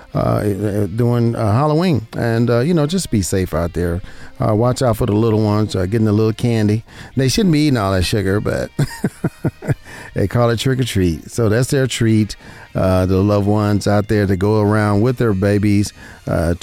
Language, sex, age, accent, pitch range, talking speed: English, male, 40-59, American, 95-130 Hz, 200 wpm